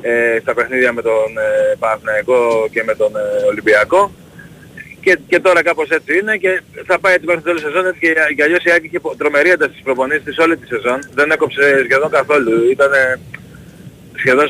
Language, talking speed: Greek, 160 wpm